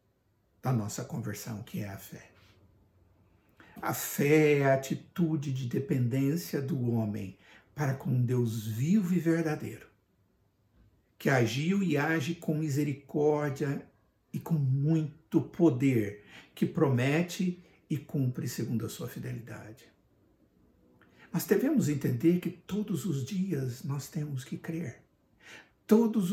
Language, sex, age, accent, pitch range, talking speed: Portuguese, male, 60-79, Brazilian, 115-165 Hz, 120 wpm